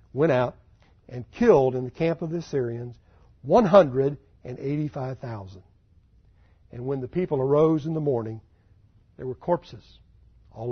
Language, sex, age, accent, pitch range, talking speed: English, male, 60-79, American, 105-145 Hz, 130 wpm